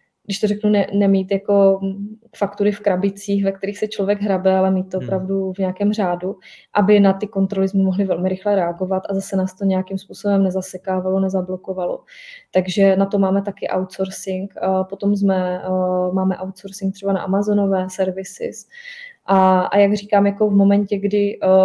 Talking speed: 165 wpm